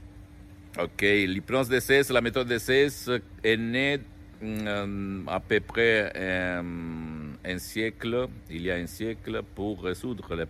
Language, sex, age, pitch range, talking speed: Italian, male, 60-79, 90-105 Hz, 145 wpm